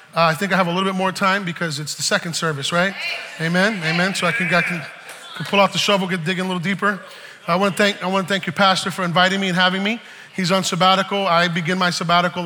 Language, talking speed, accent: English, 270 wpm, American